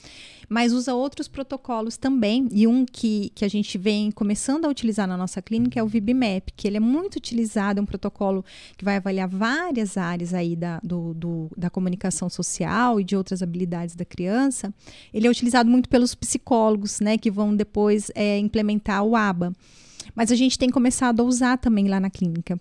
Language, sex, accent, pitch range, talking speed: Portuguese, female, Brazilian, 200-245 Hz, 180 wpm